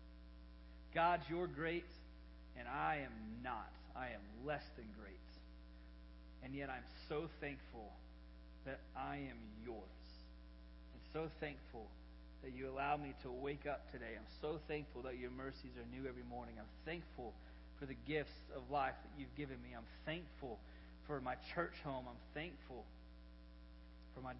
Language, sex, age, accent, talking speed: English, male, 40-59, American, 155 wpm